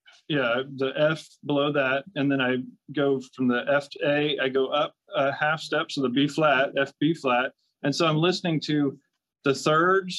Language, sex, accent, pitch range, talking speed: English, male, American, 135-170 Hz, 205 wpm